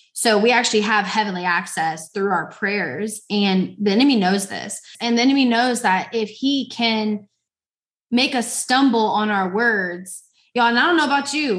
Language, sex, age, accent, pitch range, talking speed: English, female, 20-39, American, 185-225 Hz, 180 wpm